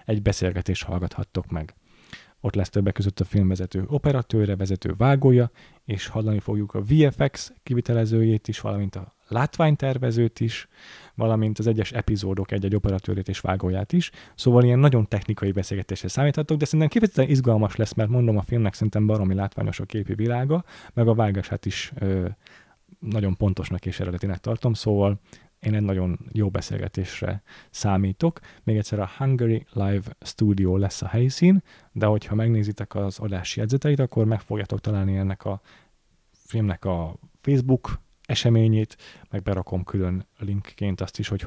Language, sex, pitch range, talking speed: Hungarian, male, 95-120 Hz, 150 wpm